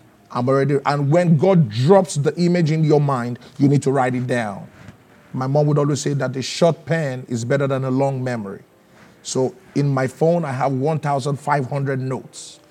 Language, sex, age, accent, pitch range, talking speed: English, male, 30-49, Nigerian, 130-165 Hz, 190 wpm